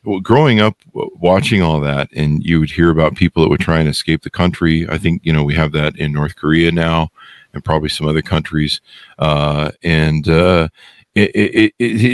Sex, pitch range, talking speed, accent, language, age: male, 80-95 Hz, 185 wpm, American, English, 50-69